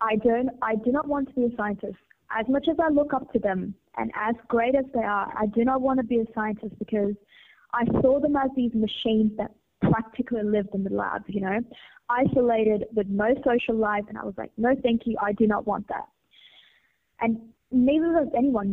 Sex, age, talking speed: female, 20-39, 220 wpm